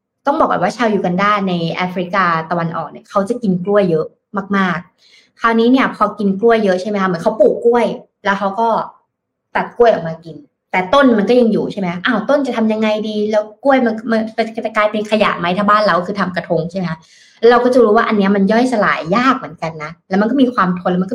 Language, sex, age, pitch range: Thai, female, 20-39, 180-230 Hz